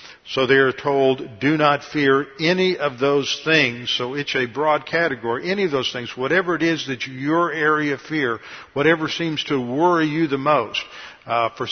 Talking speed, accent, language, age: 195 wpm, American, English, 50-69